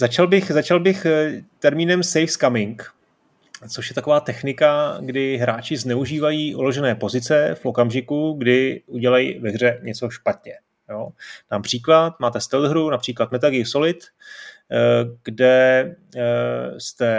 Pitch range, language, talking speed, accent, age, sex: 115-145 Hz, Czech, 115 wpm, native, 30-49, male